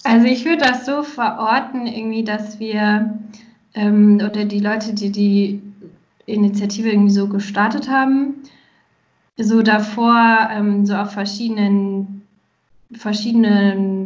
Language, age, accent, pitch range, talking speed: German, 20-39, German, 205-225 Hz, 115 wpm